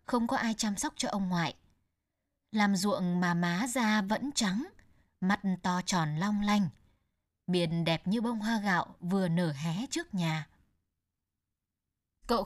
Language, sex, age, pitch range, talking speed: Vietnamese, female, 20-39, 170-225 Hz, 155 wpm